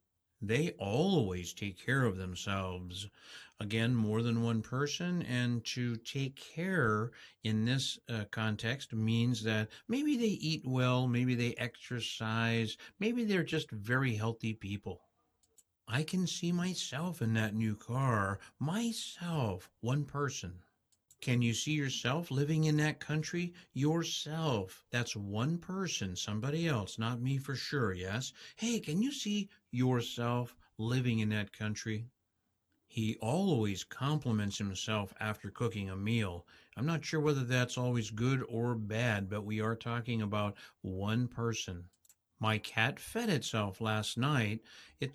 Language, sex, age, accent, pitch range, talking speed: English, male, 60-79, American, 110-145 Hz, 140 wpm